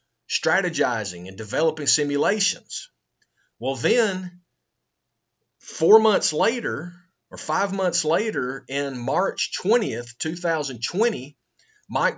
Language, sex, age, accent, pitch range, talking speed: English, male, 30-49, American, 130-175 Hz, 90 wpm